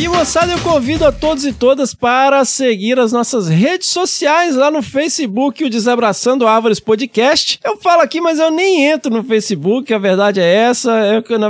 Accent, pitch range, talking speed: Brazilian, 195-275 Hz, 190 wpm